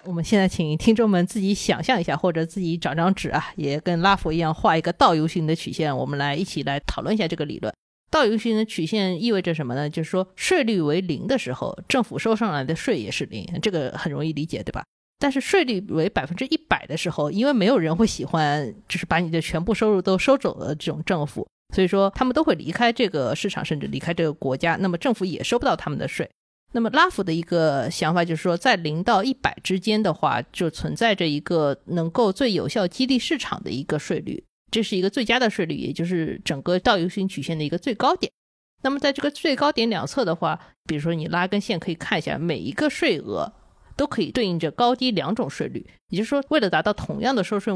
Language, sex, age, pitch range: Chinese, female, 20-39, 160-230 Hz